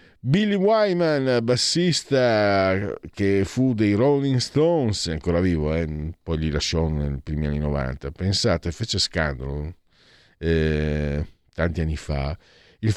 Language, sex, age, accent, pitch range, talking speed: Italian, male, 50-69, native, 80-120 Hz, 120 wpm